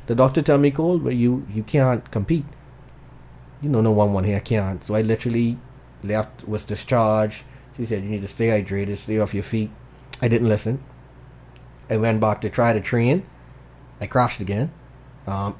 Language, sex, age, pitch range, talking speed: English, male, 30-49, 105-125 Hz, 190 wpm